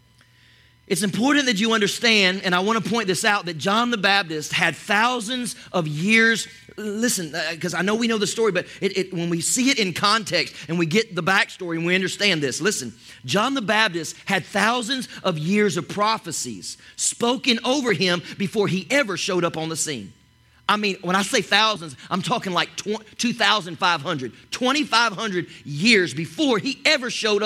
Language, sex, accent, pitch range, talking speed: English, male, American, 165-210 Hz, 180 wpm